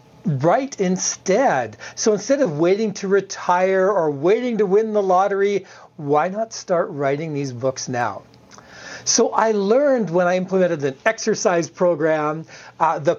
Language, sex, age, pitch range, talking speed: English, male, 40-59, 140-195 Hz, 145 wpm